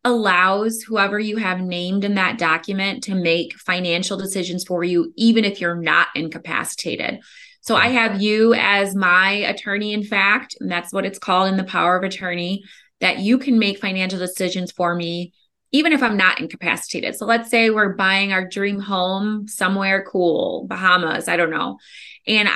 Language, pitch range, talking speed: English, 175-210 Hz, 175 wpm